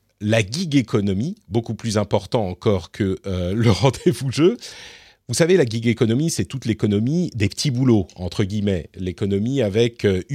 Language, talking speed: French, 170 wpm